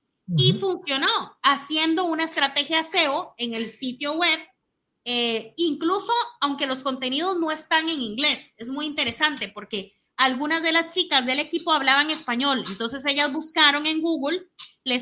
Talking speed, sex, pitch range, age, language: 150 wpm, female, 250-320 Hz, 30-49, Spanish